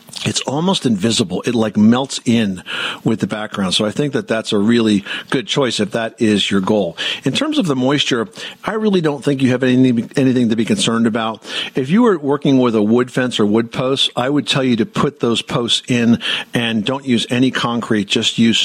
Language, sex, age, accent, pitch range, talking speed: English, male, 50-69, American, 110-130 Hz, 220 wpm